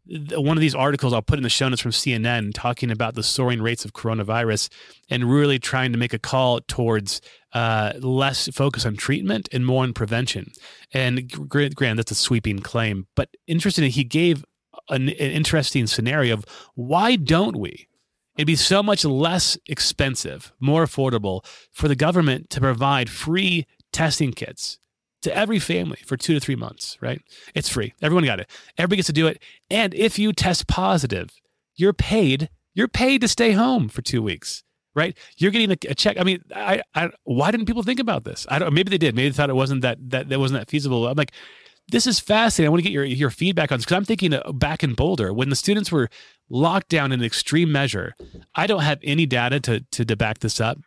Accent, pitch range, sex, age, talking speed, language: American, 125-175 Hz, male, 30-49, 210 wpm, English